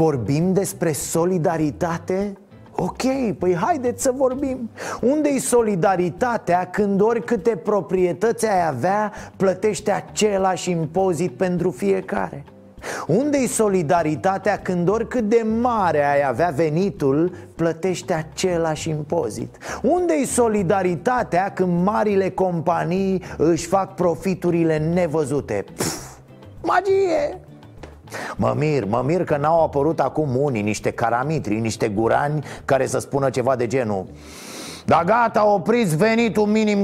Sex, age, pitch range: male, 30-49, 150-210 Hz